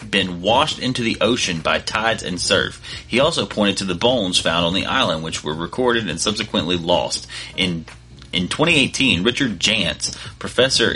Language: English